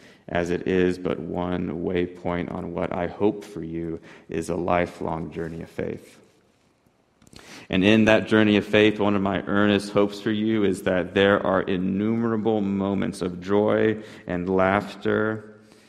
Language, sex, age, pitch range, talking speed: English, male, 30-49, 90-100 Hz, 155 wpm